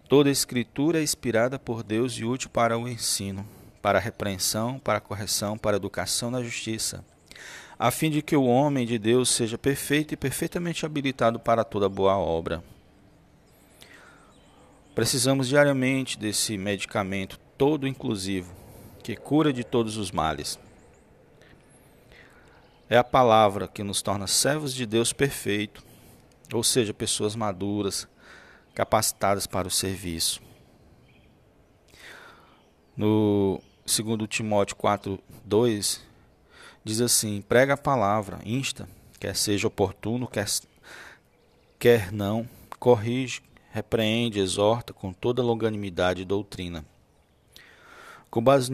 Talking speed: 120 wpm